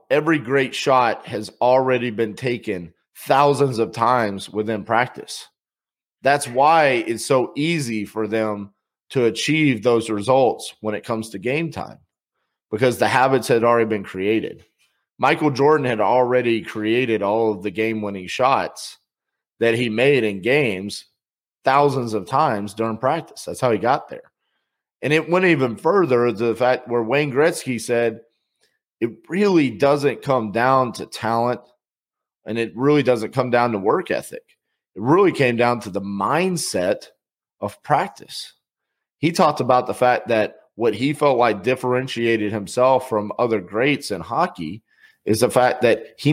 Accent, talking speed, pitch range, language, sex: American, 155 wpm, 110-145 Hz, English, male